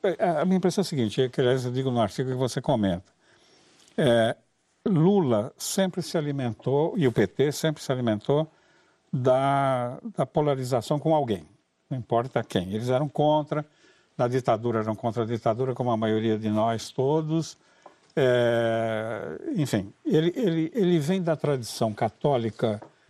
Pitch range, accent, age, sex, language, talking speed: 115-155 Hz, Brazilian, 60-79, male, Portuguese, 150 wpm